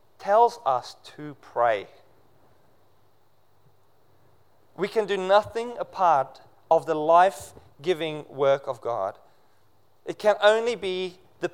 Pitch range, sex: 110-165 Hz, male